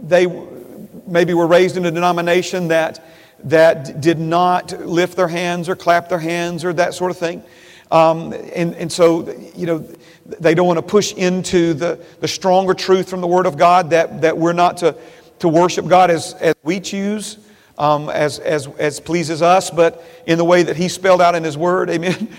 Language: English